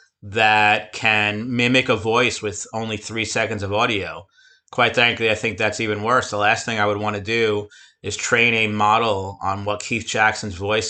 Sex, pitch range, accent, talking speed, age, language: male, 100-110 Hz, American, 195 wpm, 30-49, English